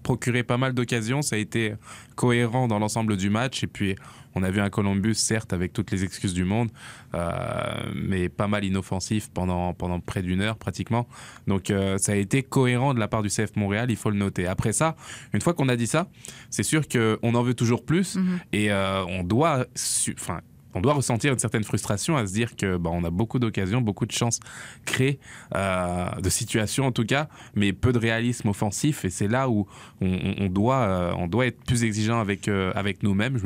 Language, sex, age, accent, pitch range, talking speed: French, male, 20-39, French, 100-125 Hz, 215 wpm